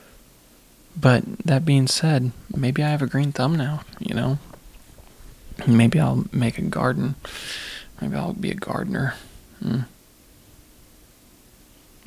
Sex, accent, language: male, American, English